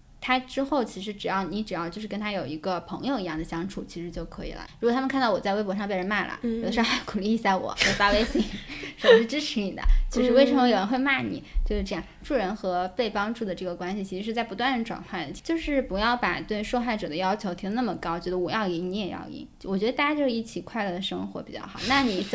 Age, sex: 10-29, female